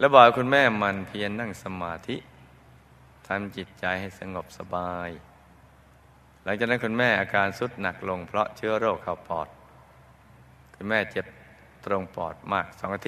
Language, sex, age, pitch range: Thai, male, 20-39, 65-105 Hz